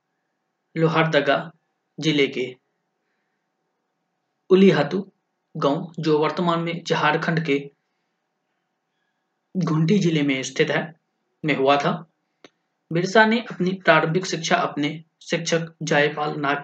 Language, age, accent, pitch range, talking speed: Hindi, 20-39, native, 150-185 Hz, 95 wpm